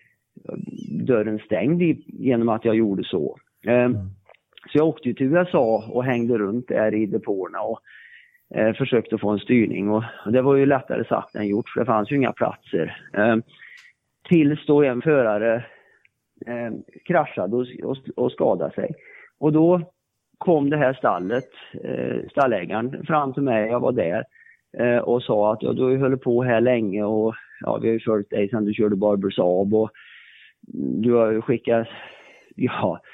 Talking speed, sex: 170 wpm, male